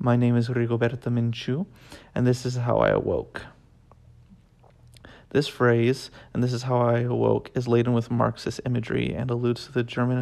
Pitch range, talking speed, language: 115-125 Hz, 170 wpm, English